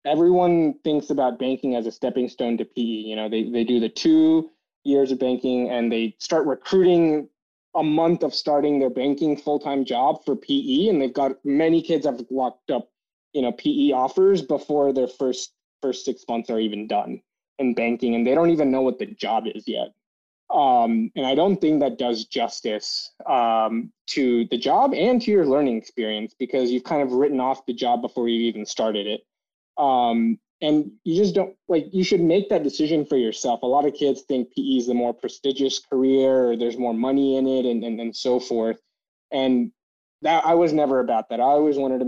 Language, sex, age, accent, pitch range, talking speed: English, male, 20-39, American, 120-150 Hz, 205 wpm